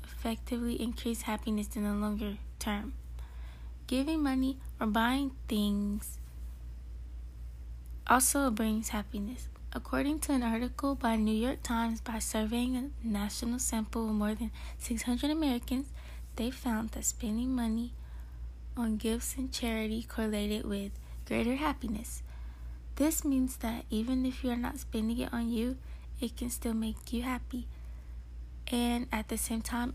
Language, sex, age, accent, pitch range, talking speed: English, female, 20-39, American, 210-245 Hz, 135 wpm